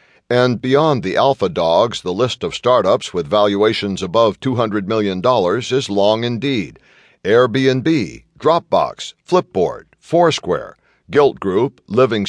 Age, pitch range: 60-79, 105-135 Hz